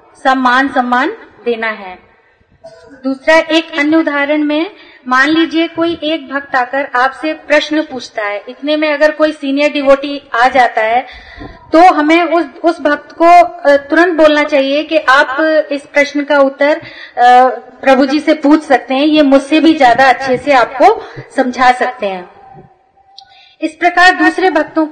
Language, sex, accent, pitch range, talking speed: Hindi, female, native, 265-320 Hz, 150 wpm